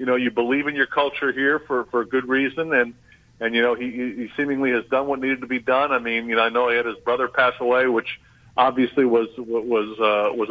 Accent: American